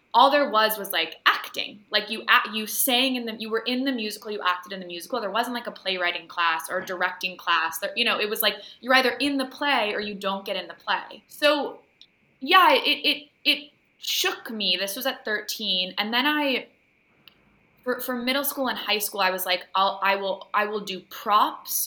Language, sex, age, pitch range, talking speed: English, female, 20-39, 185-240 Hz, 225 wpm